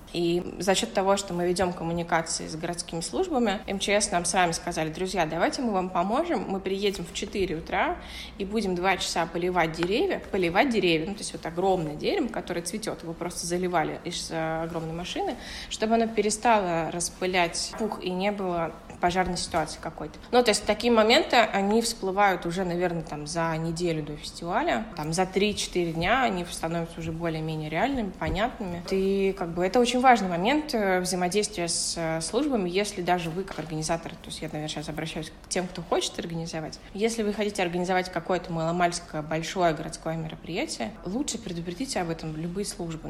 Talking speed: 170 wpm